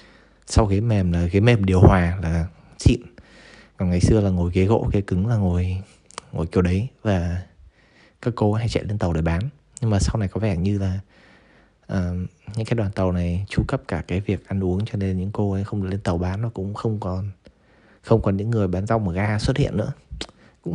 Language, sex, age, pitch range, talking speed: Vietnamese, male, 20-39, 95-115 Hz, 230 wpm